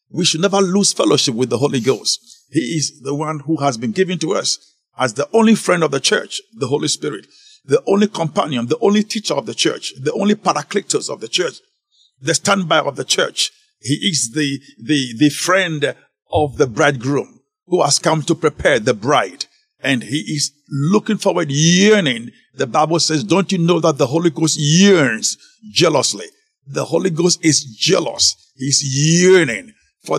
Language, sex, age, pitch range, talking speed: English, male, 50-69, 145-185 Hz, 180 wpm